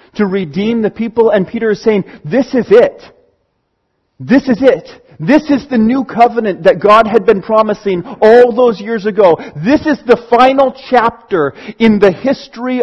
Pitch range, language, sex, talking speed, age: 200-245 Hz, English, male, 170 wpm, 40-59